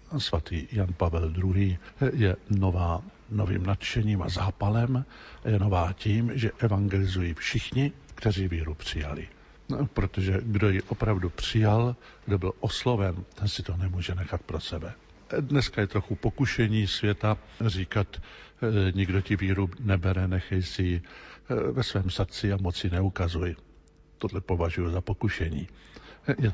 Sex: male